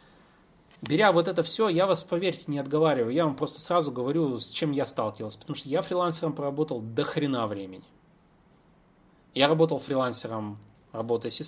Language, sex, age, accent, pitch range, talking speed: Russian, male, 30-49, native, 125-165 Hz, 155 wpm